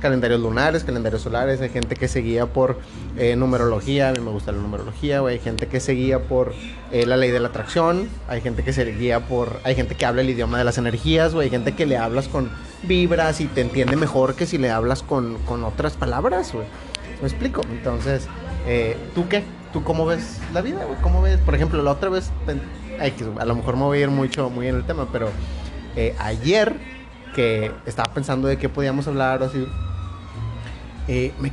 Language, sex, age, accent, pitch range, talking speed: Spanish, male, 30-49, Mexican, 105-140 Hz, 215 wpm